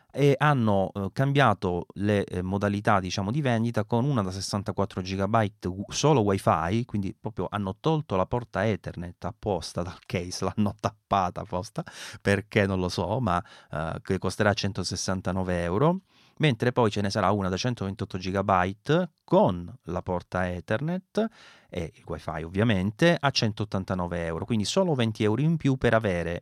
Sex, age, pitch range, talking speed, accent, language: male, 30-49, 95-115 Hz, 155 wpm, native, Italian